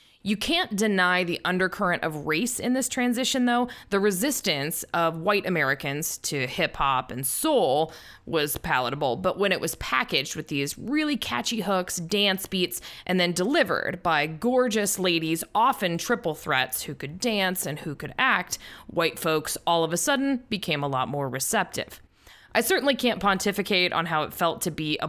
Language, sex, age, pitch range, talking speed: English, female, 20-39, 155-215 Hz, 175 wpm